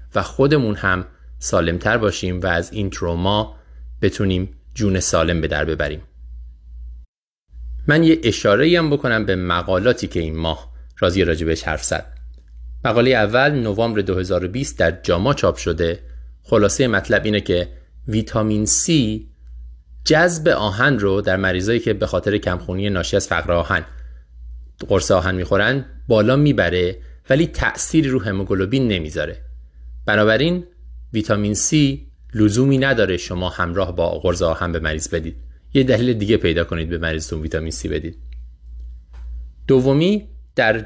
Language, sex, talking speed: Persian, male, 135 wpm